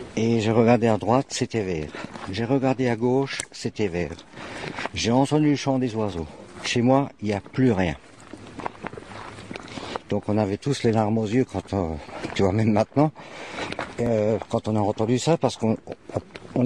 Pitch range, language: 110-140 Hz, French